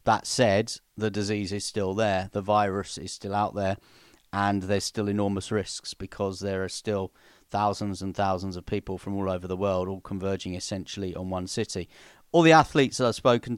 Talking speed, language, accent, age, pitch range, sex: 195 wpm, English, British, 30-49, 95-115 Hz, male